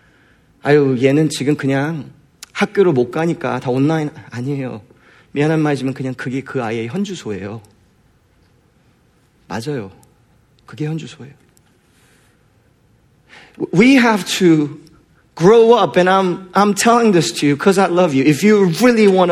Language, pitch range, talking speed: English, 135-210 Hz, 125 wpm